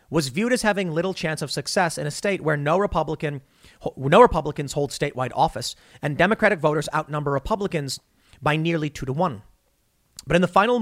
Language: English